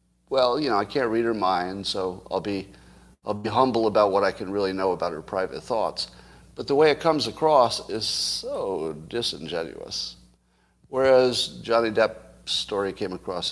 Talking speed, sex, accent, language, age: 175 wpm, male, American, English, 50-69